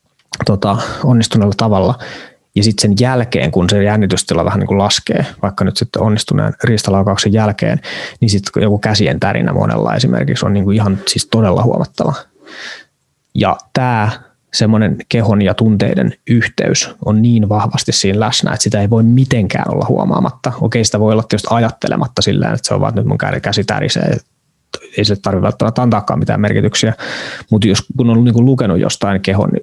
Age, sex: 20-39, male